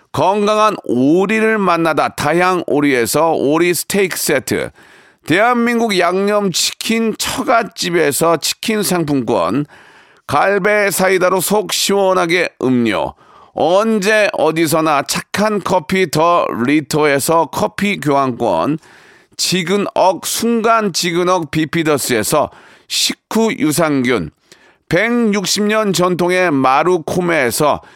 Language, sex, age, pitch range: Korean, male, 40-59, 160-205 Hz